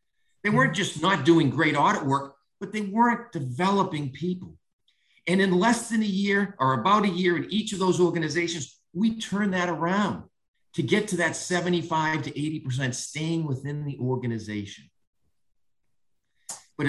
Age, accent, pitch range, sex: 50-69, American, 140-195 Hz, male